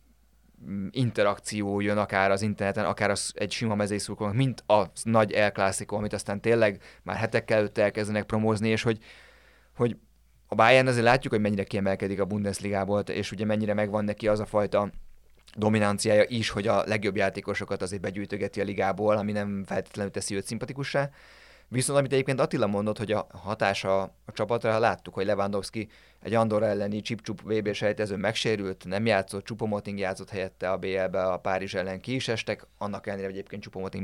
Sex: male